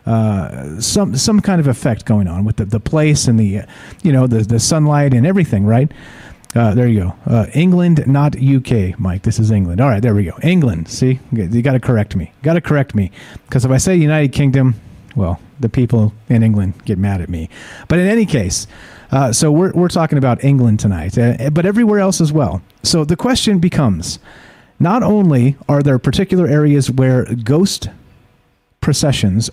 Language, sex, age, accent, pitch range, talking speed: English, male, 40-59, American, 115-150 Hz, 195 wpm